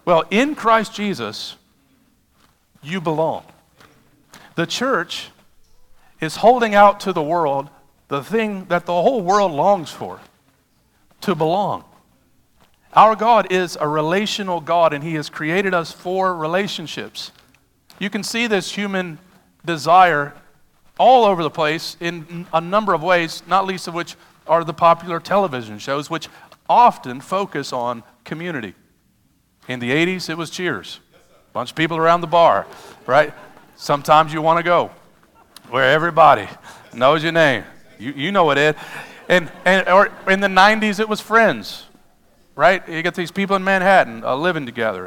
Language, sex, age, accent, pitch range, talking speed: English, male, 50-69, American, 150-190 Hz, 150 wpm